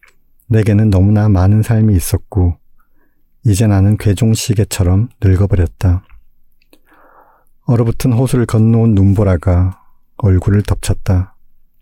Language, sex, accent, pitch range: Korean, male, native, 90-110 Hz